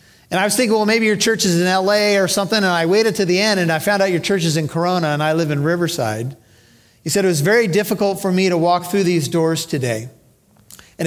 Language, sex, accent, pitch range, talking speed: English, male, American, 155-195 Hz, 260 wpm